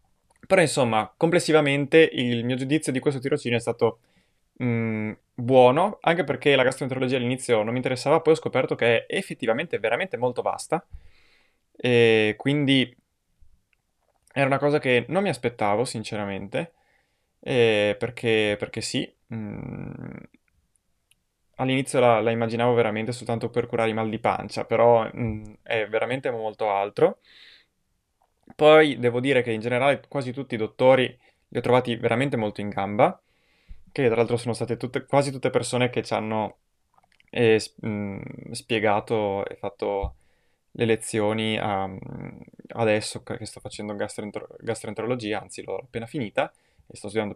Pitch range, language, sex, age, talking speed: 110-130 Hz, Italian, male, 20-39, 140 wpm